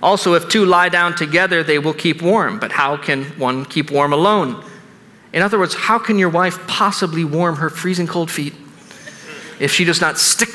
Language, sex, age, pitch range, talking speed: English, male, 40-59, 150-200 Hz, 200 wpm